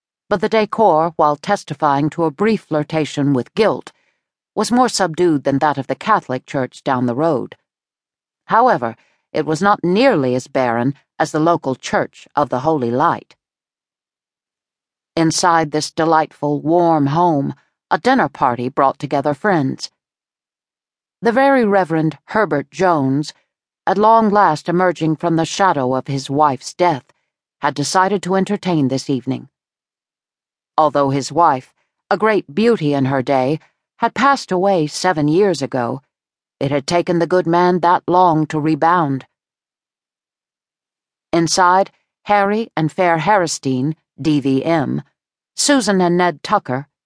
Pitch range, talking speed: 140-190 Hz, 135 wpm